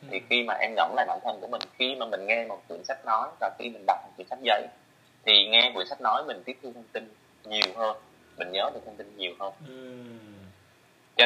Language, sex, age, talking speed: Vietnamese, male, 20-39, 245 wpm